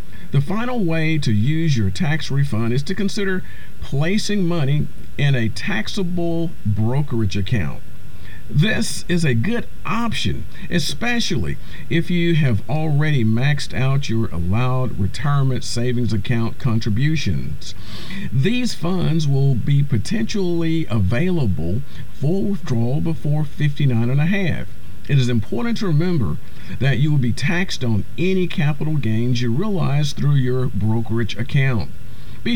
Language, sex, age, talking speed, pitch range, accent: English, male, 50-69, 130 wpm, 115-160 Hz, American